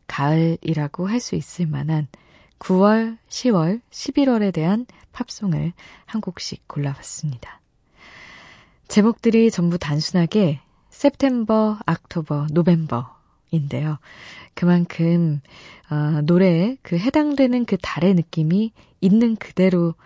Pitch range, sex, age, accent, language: 155-225 Hz, female, 20-39, native, Korean